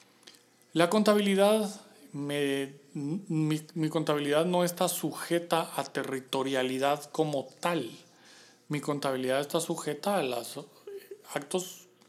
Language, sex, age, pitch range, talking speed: Spanish, male, 40-59, 135-170 Hz, 95 wpm